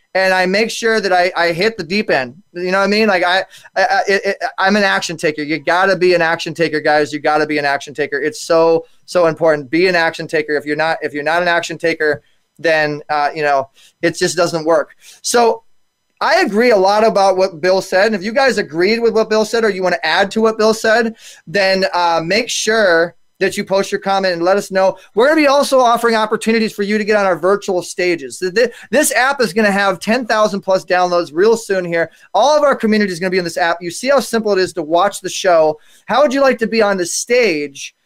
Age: 20-39